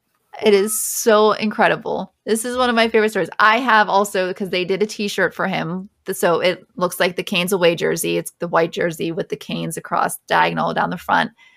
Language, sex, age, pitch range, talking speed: English, female, 20-39, 175-215 Hz, 215 wpm